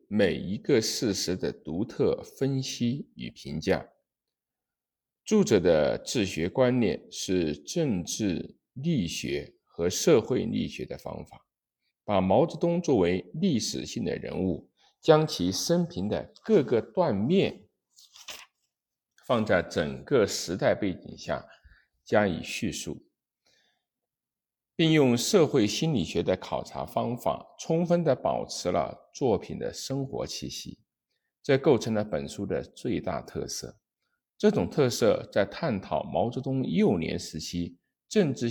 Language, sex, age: Chinese, male, 50-69